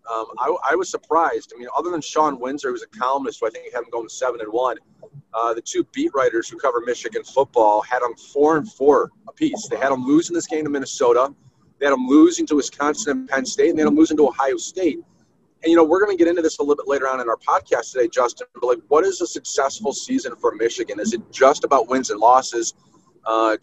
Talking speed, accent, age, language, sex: 255 wpm, American, 30-49, English, male